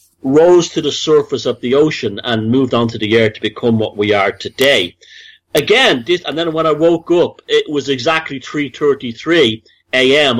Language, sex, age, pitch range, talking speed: English, male, 40-59, 115-155 Hz, 185 wpm